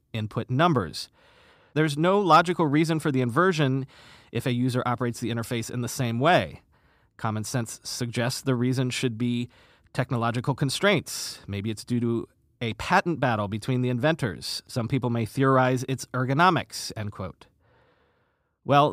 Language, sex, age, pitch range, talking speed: English, male, 30-49, 115-155 Hz, 150 wpm